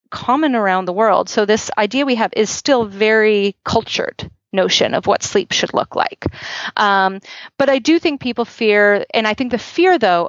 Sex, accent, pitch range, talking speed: female, American, 170-220 Hz, 190 wpm